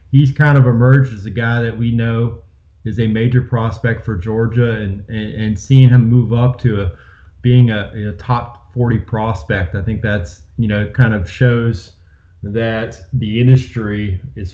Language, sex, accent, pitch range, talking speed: English, male, American, 110-125 Hz, 180 wpm